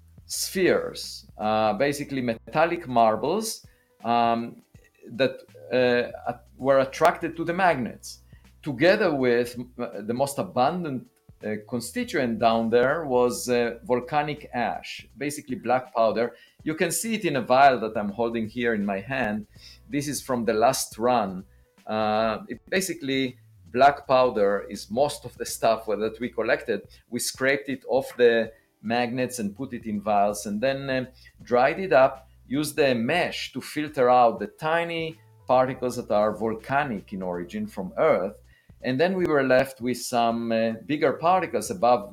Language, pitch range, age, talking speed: English, 110-135 Hz, 50-69, 150 wpm